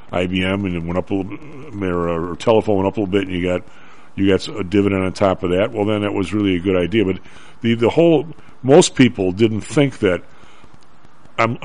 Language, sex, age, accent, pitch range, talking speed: English, male, 50-69, American, 90-110 Hz, 225 wpm